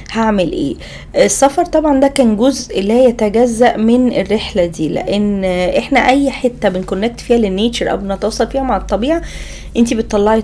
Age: 20-39